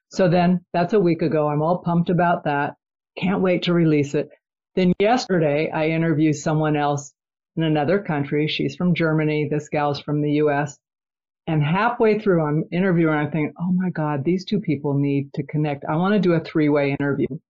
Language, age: English, 50-69